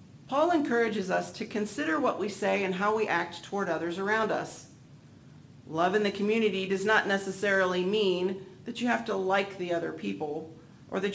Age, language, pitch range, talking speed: 40-59, English, 150-215 Hz, 185 wpm